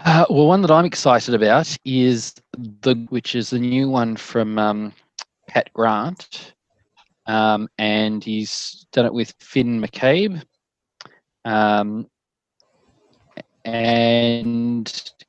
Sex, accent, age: male, Australian, 20-39